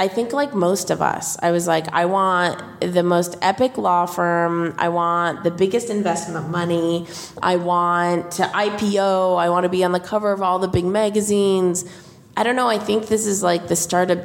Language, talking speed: English, 200 wpm